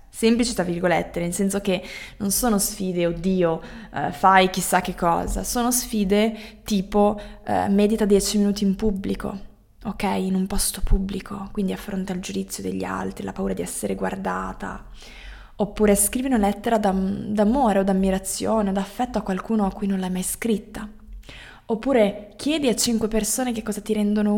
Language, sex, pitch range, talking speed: Italian, female, 185-215 Hz, 165 wpm